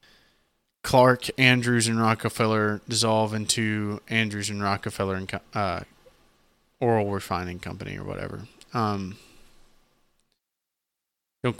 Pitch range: 110-125 Hz